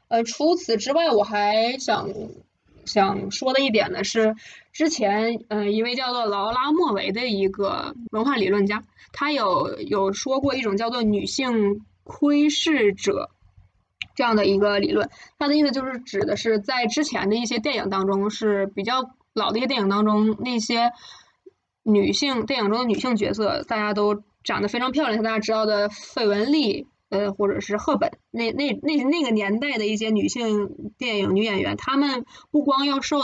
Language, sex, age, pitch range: Chinese, female, 20-39, 205-265 Hz